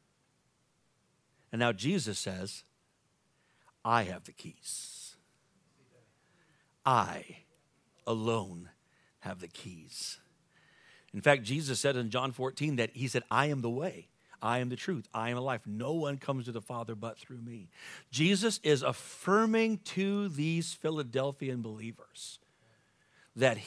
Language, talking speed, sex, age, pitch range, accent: English, 130 wpm, male, 50-69, 120-165 Hz, American